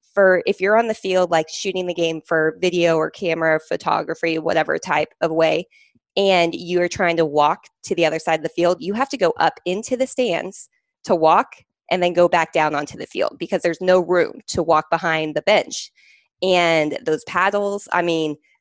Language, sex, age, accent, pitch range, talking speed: English, female, 20-39, American, 160-190 Hz, 205 wpm